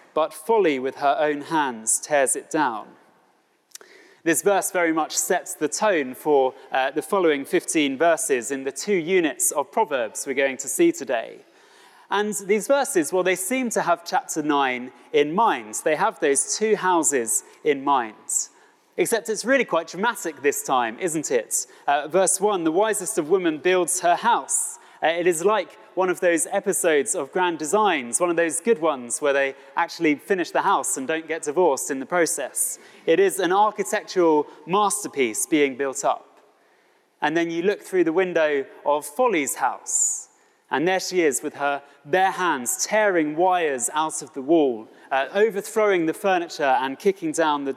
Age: 30-49